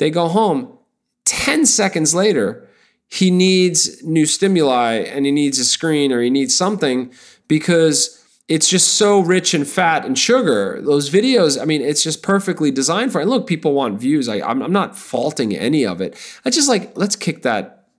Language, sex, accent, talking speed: English, male, American, 190 wpm